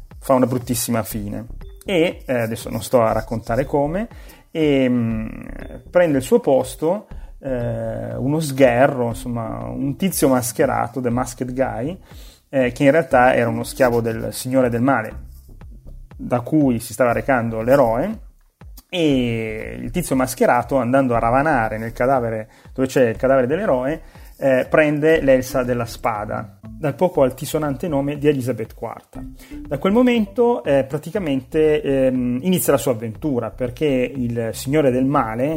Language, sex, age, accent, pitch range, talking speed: Italian, male, 30-49, native, 120-150 Hz, 145 wpm